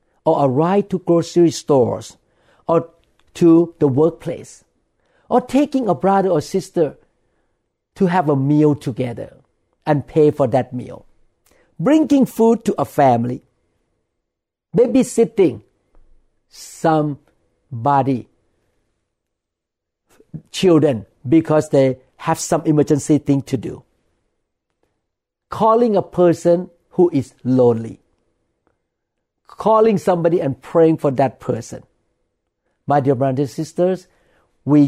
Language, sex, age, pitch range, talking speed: English, male, 50-69, 125-170 Hz, 105 wpm